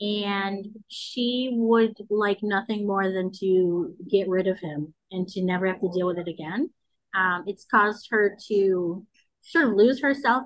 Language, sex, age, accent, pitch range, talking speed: English, female, 30-49, American, 195-230 Hz, 170 wpm